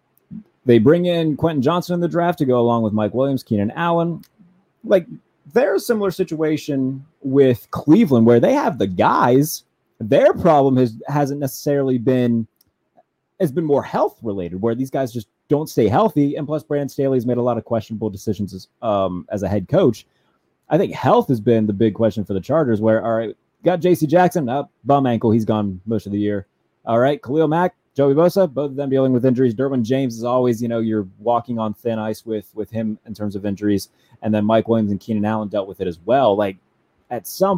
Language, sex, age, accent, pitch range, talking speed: English, male, 30-49, American, 110-150 Hz, 215 wpm